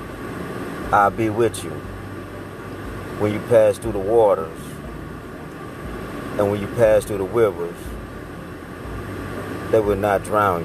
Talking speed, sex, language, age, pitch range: 120 wpm, male, English, 30-49, 95-110 Hz